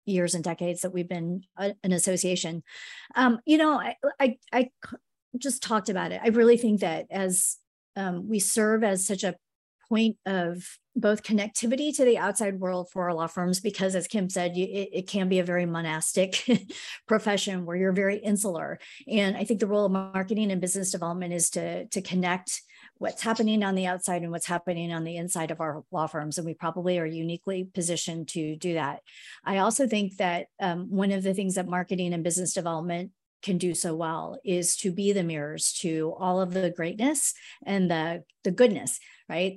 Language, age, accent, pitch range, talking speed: English, 50-69, American, 170-200 Hz, 195 wpm